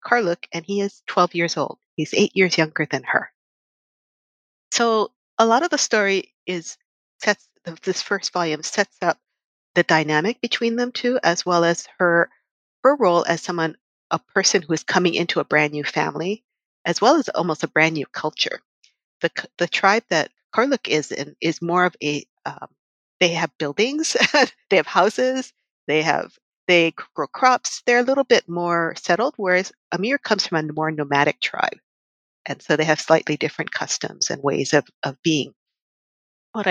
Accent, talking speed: American, 175 wpm